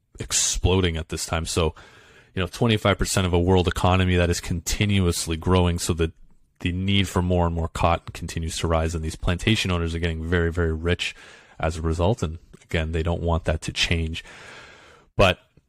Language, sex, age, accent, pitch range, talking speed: English, male, 30-49, American, 85-100 Hz, 185 wpm